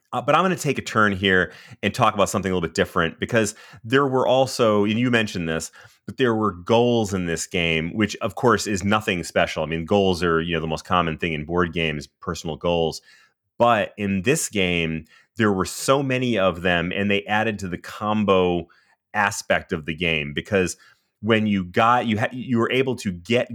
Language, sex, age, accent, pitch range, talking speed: English, male, 30-49, American, 90-110 Hz, 215 wpm